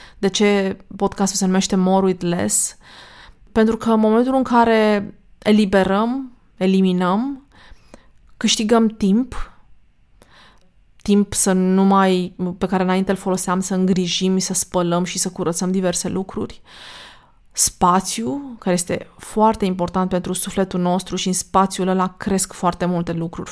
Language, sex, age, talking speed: Romanian, female, 20-39, 135 wpm